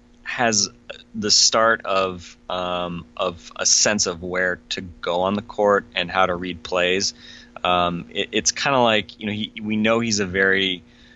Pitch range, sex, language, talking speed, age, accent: 85-100 Hz, male, English, 185 wpm, 30-49, American